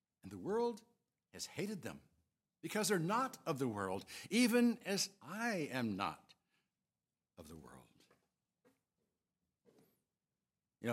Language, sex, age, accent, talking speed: English, male, 60-79, American, 105 wpm